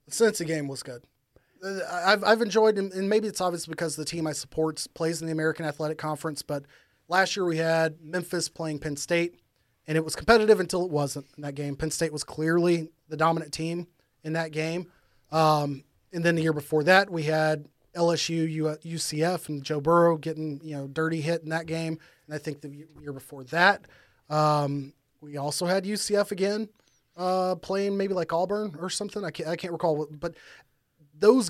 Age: 30-49